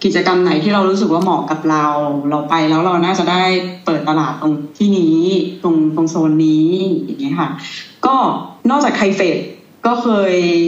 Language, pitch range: Thai, 160-205 Hz